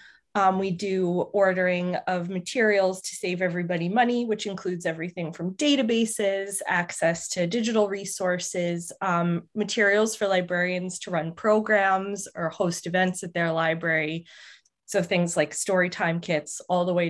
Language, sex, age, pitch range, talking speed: English, female, 20-39, 175-200 Hz, 145 wpm